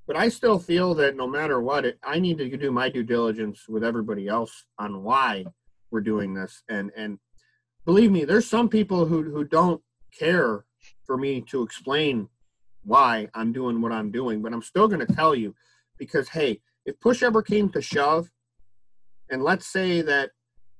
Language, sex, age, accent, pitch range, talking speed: English, male, 40-59, American, 110-160 Hz, 180 wpm